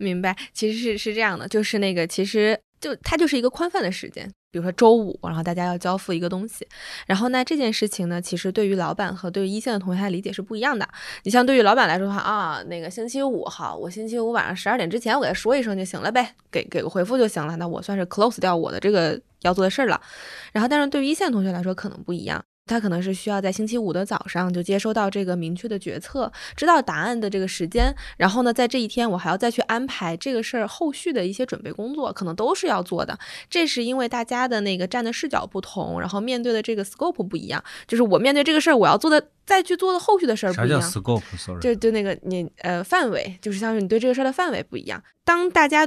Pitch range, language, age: 190-250 Hz, Chinese, 10-29